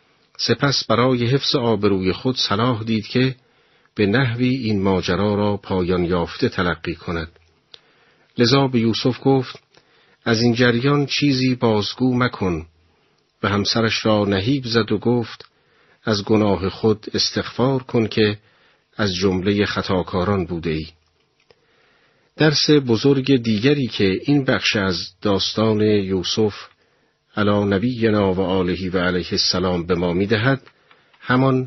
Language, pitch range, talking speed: Persian, 95-120 Hz, 125 wpm